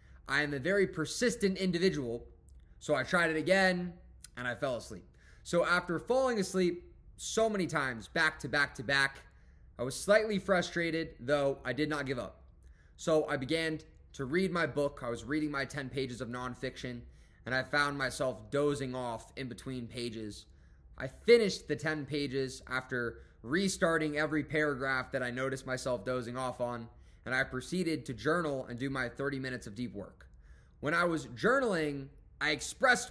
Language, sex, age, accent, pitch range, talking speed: English, male, 20-39, American, 125-165 Hz, 175 wpm